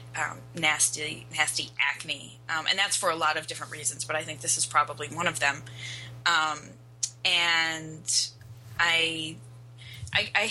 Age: 20-39